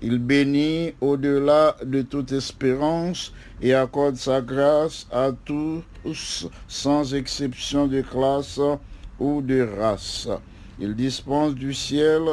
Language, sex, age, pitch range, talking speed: English, male, 60-79, 125-150 Hz, 110 wpm